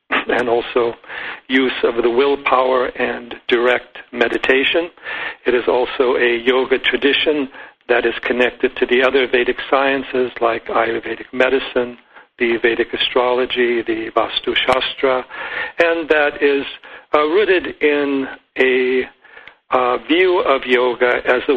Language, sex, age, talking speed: English, male, 60-79, 125 wpm